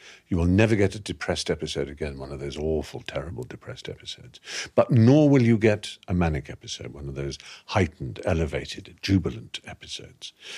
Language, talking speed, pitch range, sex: English, 170 wpm, 85-115 Hz, male